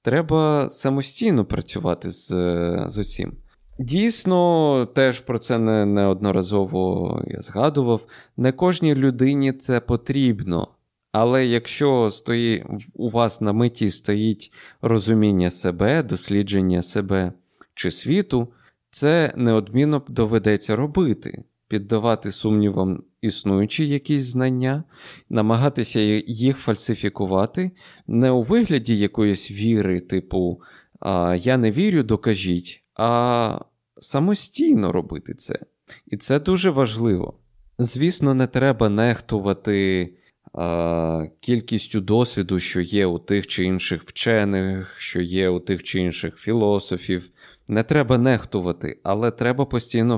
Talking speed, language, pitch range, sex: 105 wpm, Ukrainian, 95-125 Hz, male